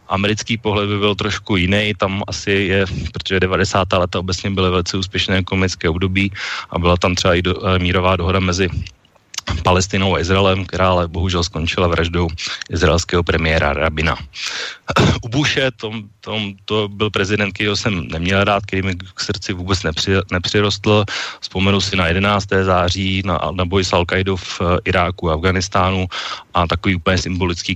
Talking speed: 160 wpm